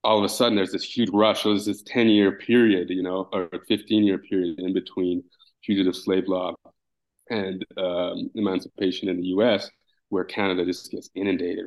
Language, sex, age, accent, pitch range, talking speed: English, male, 20-39, American, 95-110 Hz, 170 wpm